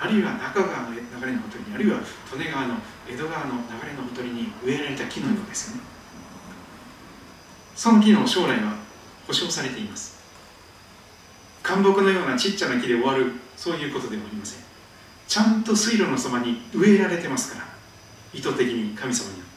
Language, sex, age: Japanese, male, 40-59